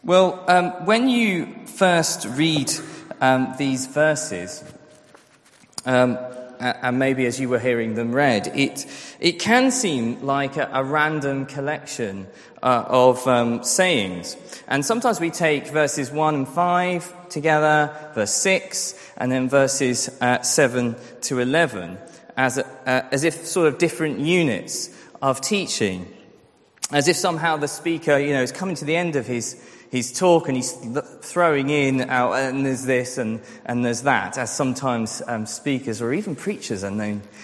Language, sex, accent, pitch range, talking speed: English, male, British, 125-175 Hz, 150 wpm